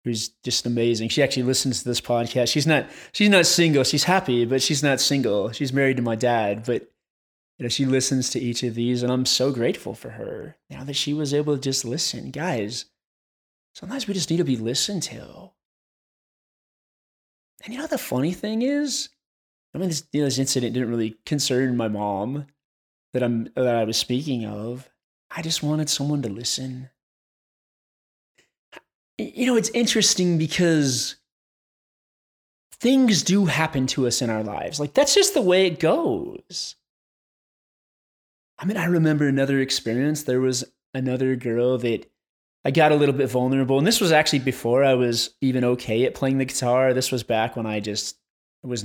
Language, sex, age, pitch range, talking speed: English, male, 20-39, 120-155 Hz, 180 wpm